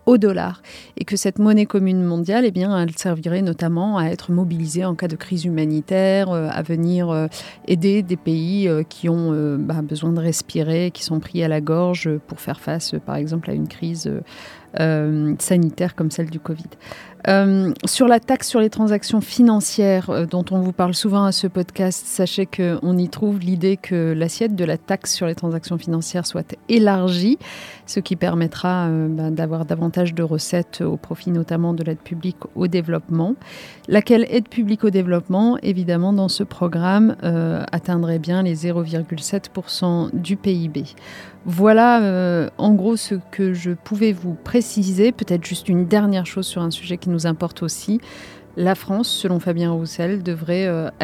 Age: 30-49